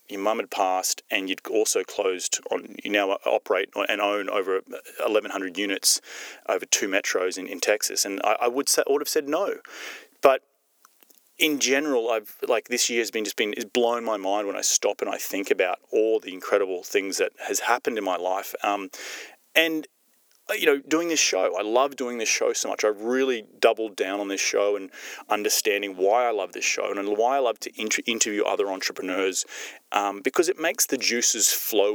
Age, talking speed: 30-49, 200 wpm